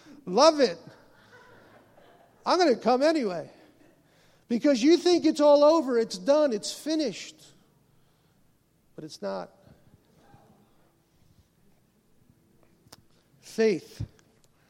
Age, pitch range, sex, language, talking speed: 50-69, 195-265 Hz, male, English, 85 wpm